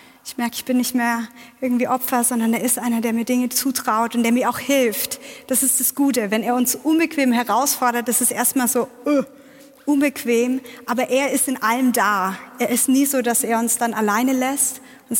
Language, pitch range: German, 230-260 Hz